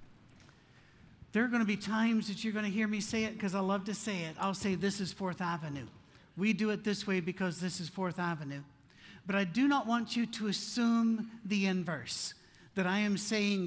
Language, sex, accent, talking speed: English, male, American, 220 wpm